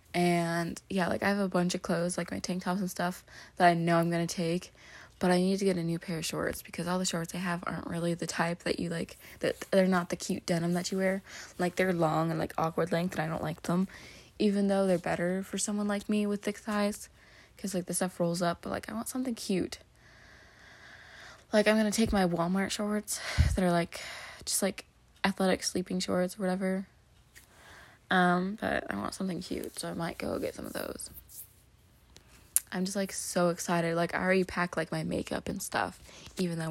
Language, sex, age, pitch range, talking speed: English, female, 20-39, 170-195 Hz, 225 wpm